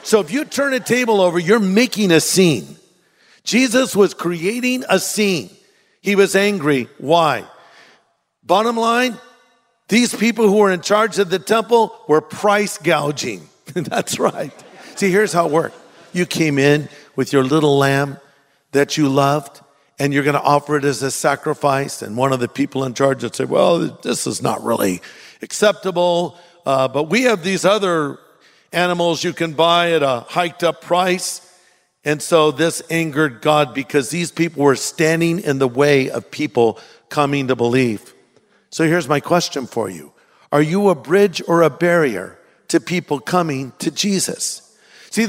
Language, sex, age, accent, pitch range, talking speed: English, male, 50-69, American, 145-200 Hz, 165 wpm